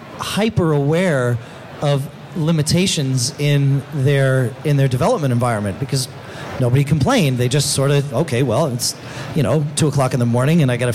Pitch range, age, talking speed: 130-155 Hz, 30-49, 165 wpm